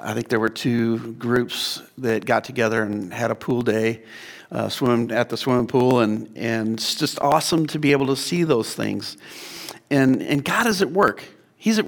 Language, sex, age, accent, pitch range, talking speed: English, male, 50-69, American, 120-160 Hz, 195 wpm